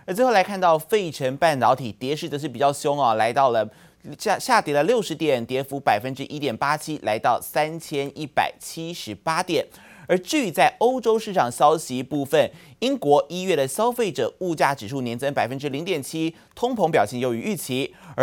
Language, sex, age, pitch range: Chinese, male, 30-49, 125-170 Hz